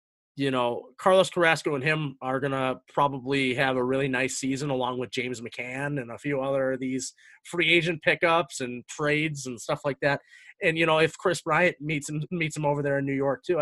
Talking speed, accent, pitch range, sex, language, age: 215 wpm, American, 135-170 Hz, male, English, 30-49